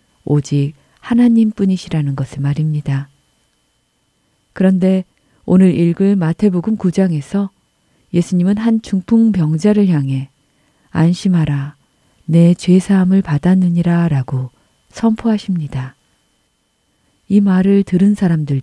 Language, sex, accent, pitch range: Korean, female, native, 140-195 Hz